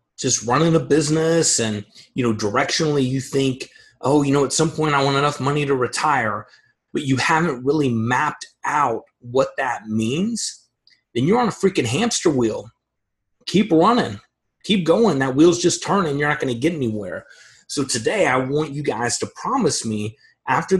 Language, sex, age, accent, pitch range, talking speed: English, male, 30-49, American, 115-155 Hz, 180 wpm